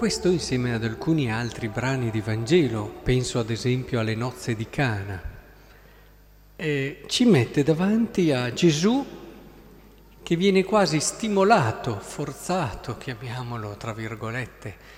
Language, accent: Italian, native